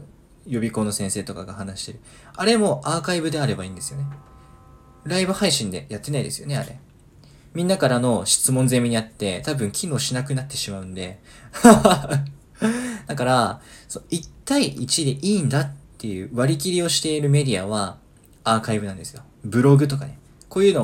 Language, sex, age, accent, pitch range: Japanese, male, 20-39, native, 110-150 Hz